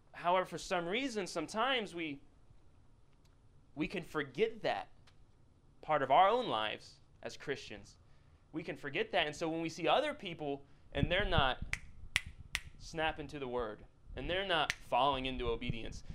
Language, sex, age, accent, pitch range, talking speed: English, male, 20-39, American, 120-160 Hz, 150 wpm